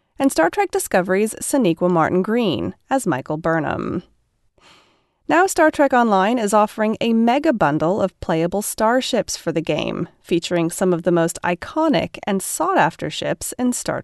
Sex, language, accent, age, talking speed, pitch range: female, English, American, 30-49, 145 wpm, 175-275 Hz